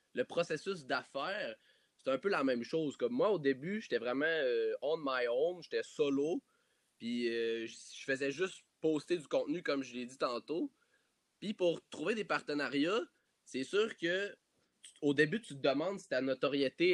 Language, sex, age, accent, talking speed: French, male, 20-39, Canadian, 190 wpm